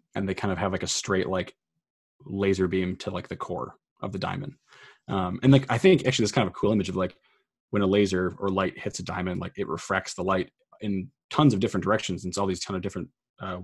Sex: male